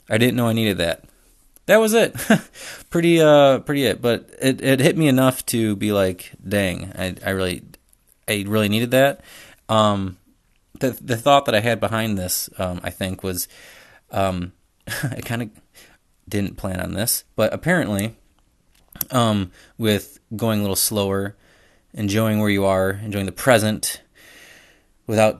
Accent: American